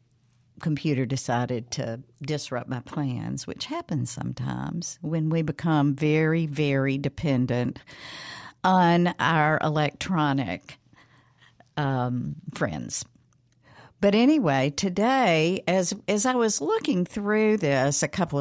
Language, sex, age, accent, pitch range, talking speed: English, female, 60-79, American, 130-170 Hz, 105 wpm